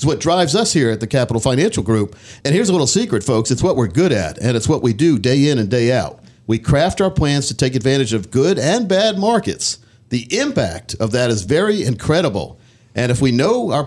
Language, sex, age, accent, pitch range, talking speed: English, male, 50-69, American, 115-170 Hz, 240 wpm